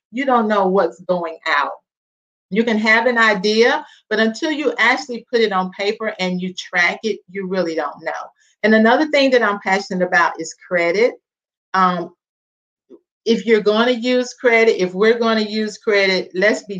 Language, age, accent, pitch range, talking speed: English, 40-59, American, 185-230 Hz, 180 wpm